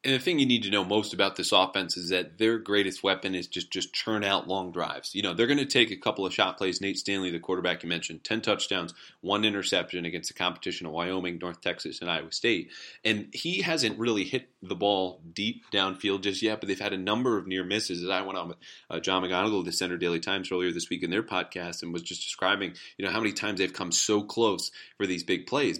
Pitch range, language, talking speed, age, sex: 90-110 Hz, English, 255 wpm, 30-49, male